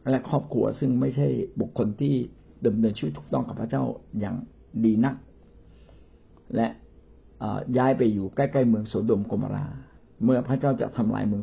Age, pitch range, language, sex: 60-79, 100-130 Hz, Thai, male